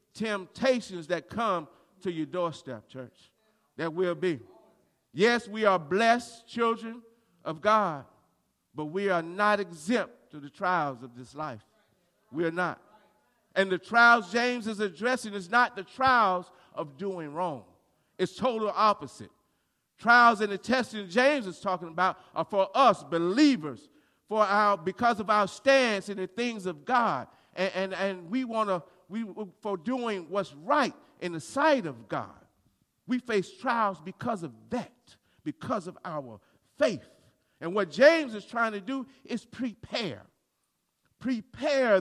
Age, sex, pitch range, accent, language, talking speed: 50-69, male, 165-225 Hz, American, English, 150 wpm